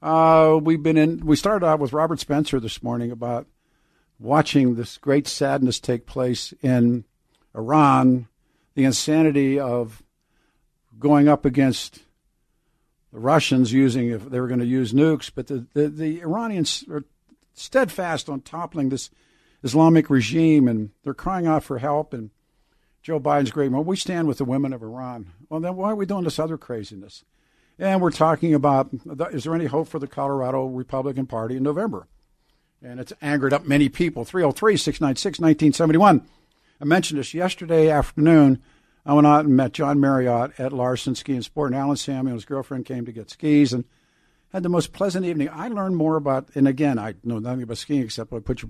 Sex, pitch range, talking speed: male, 125-155 Hz, 175 wpm